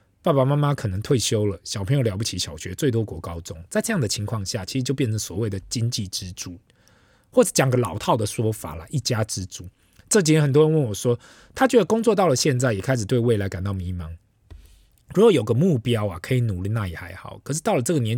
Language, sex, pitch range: Chinese, male, 100-140 Hz